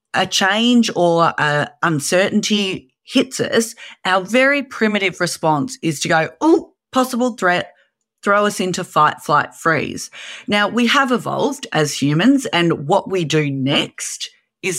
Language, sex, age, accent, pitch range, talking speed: English, female, 30-49, Australian, 160-215 Hz, 140 wpm